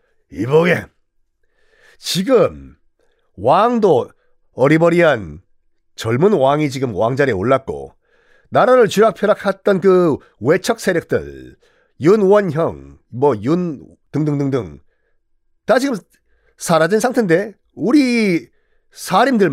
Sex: male